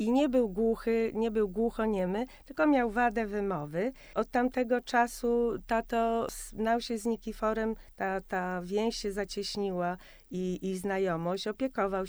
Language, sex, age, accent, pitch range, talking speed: Polish, female, 40-59, native, 185-225 Hz, 140 wpm